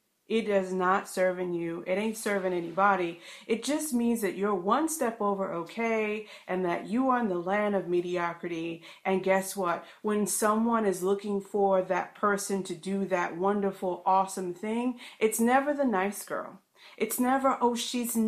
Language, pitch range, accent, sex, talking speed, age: English, 185-235 Hz, American, female, 175 wpm, 40-59